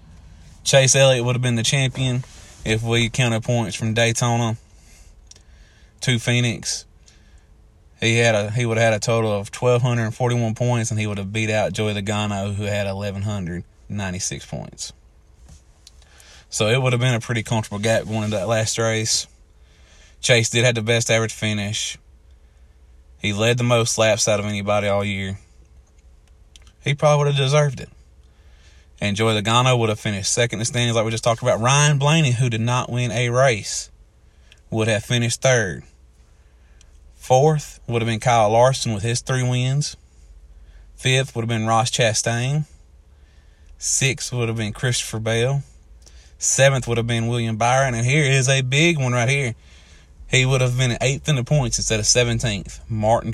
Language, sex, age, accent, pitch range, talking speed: English, male, 20-39, American, 80-120 Hz, 170 wpm